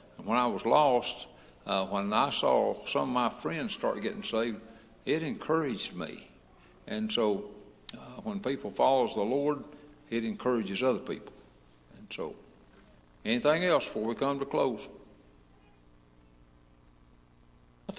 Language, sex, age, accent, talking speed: English, male, 60-79, American, 135 wpm